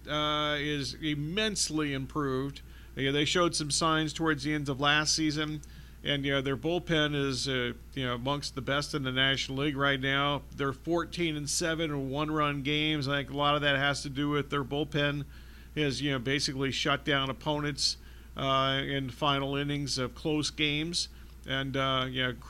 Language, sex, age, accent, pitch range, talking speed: English, male, 50-69, American, 135-160 Hz, 185 wpm